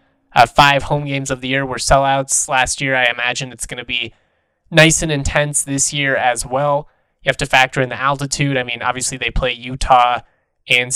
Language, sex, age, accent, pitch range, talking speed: English, male, 20-39, American, 125-145 Hz, 210 wpm